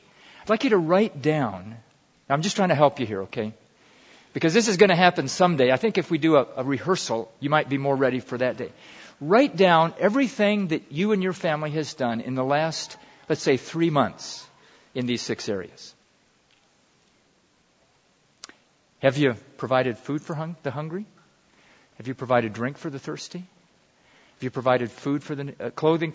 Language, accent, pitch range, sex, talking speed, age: English, American, 125-165 Hz, male, 185 wpm, 50-69